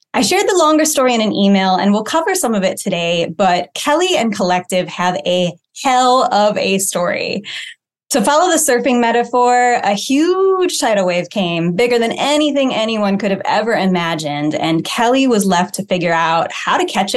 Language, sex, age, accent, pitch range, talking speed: English, female, 20-39, American, 190-260 Hz, 185 wpm